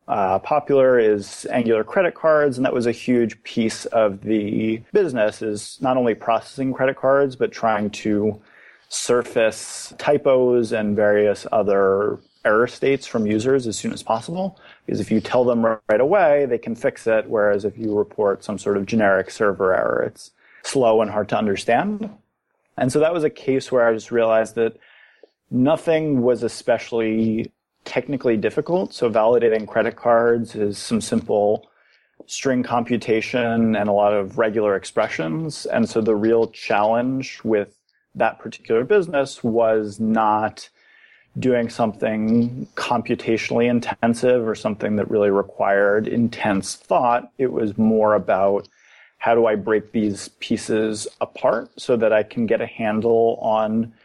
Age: 30-49